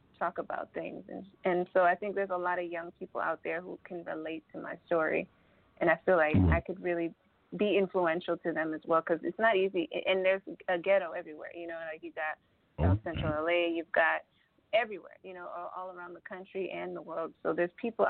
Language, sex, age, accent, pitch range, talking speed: English, female, 30-49, American, 170-190 Hz, 225 wpm